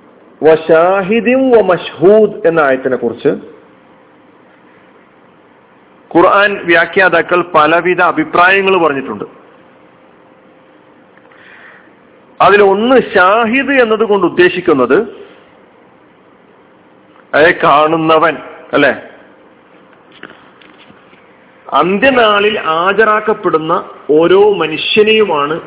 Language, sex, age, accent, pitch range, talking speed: Malayalam, male, 40-59, native, 170-255 Hz, 50 wpm